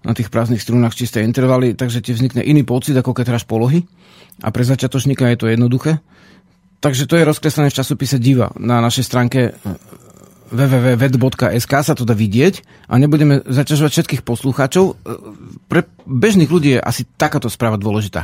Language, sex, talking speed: Slovak, male, 160 wpm